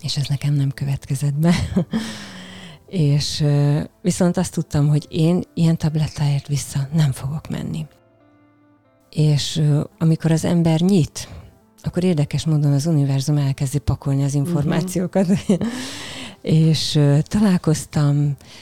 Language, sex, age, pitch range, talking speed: Hungarian, female, 30-49, 140-165 Hz, 120 wpm